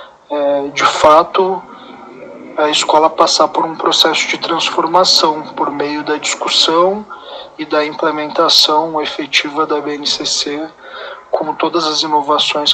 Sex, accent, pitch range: male, Brazilian, 145-165 Hz